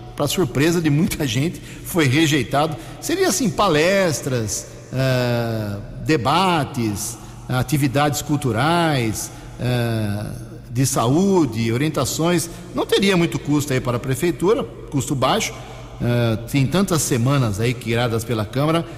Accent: Brazilian